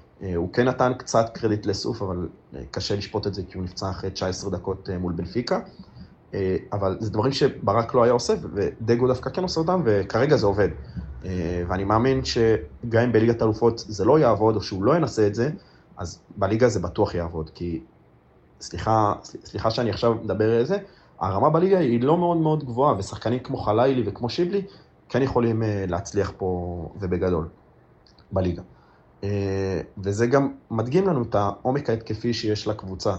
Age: 30-49